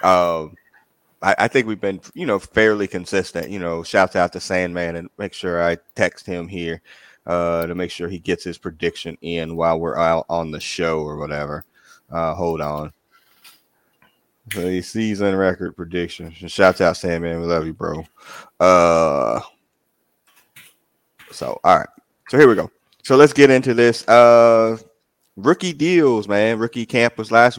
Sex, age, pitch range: male, 30-49, 85-115 Hz